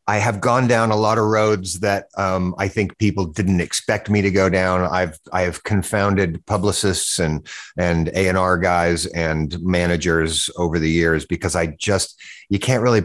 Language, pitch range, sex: English, 90-115 Hz, male